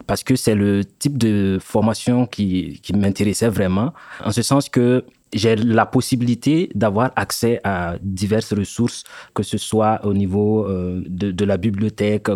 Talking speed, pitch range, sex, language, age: 160 wpm, 100-120 Hz, male, English, 30-49